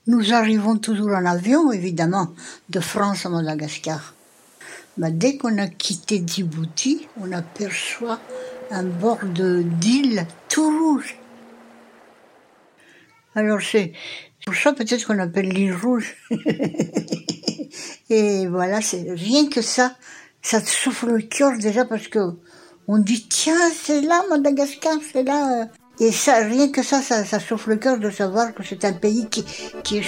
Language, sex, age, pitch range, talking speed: French, female, 60-79, 185-255 Hz, 150 wpm